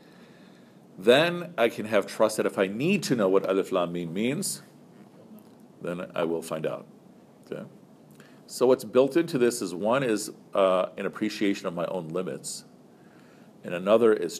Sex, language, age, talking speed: male, English, 50-69, 165 wpm